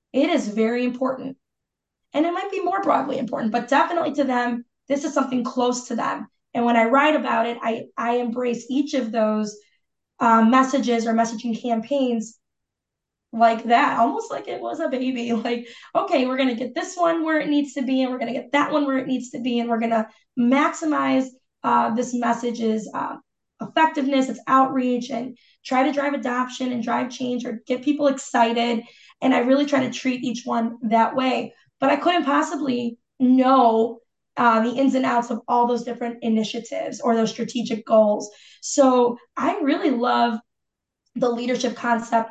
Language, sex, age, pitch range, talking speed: English, female, 20-39, 230-275 Hz, 185 wpm